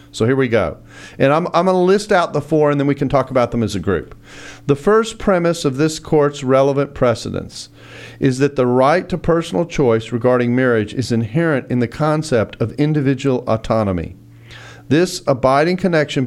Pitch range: 115-145 Hz